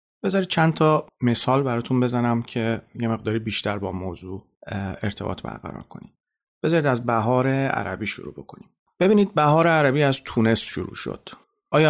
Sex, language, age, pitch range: male, Persian, 30-49, 105-140 Hz